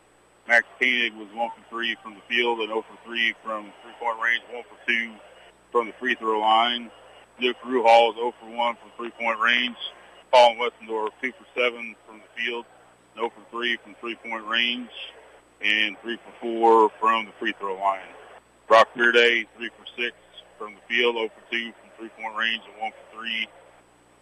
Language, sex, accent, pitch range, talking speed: English, male, American, 100-115 Hz, 185 wpm